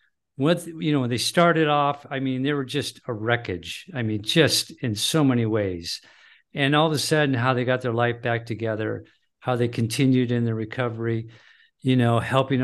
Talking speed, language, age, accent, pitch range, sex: 200 wpm, English, 50-69, American, 115-145 Hz, male